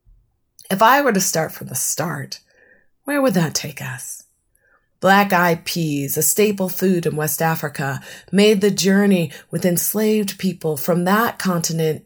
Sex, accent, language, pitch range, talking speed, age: female, American, English, 145-190 Hz, 150 wpm, 30-49